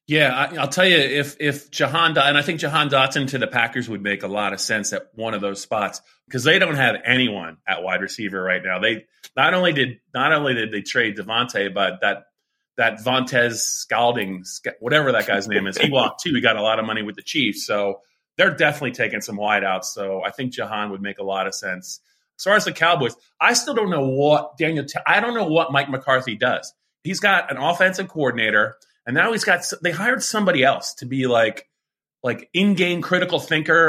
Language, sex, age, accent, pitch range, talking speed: English, male, 30-49, American, 115-155 Hz, 220 wpm